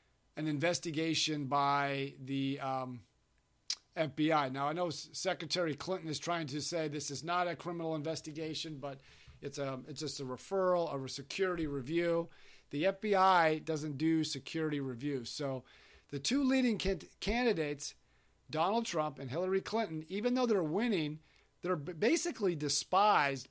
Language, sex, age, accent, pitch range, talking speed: English, male, 40-59, American, 145-190 Hz, 135 wpm